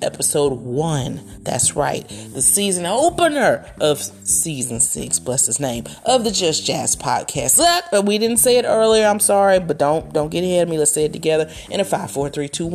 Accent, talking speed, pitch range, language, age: American, 200 wpm, 135-190 Hz, English, 30-49